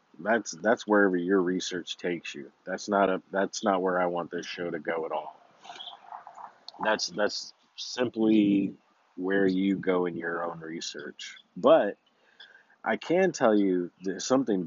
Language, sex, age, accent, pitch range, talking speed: English, male, 40-59, American, 90-110 Hz, 155 wpm